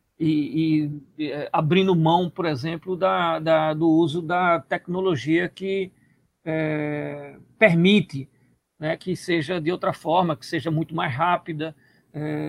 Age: 50-69